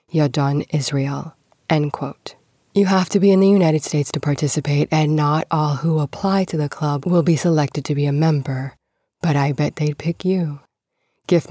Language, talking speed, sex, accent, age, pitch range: English, 190 wpm, female, American, 20-39, 145-170 Hz